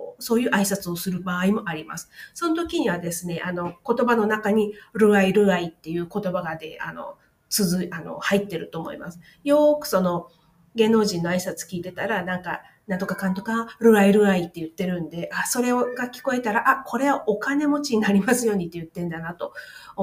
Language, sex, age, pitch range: Japanese, female, 40-59, 175-230 Hz